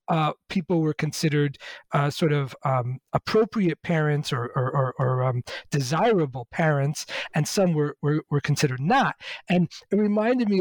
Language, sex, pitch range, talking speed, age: English, male, 145-175 Hz, 160 wpm, 40-59